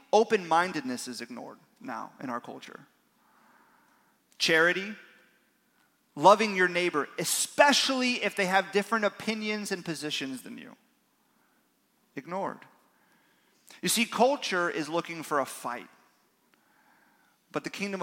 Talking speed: 110 wpm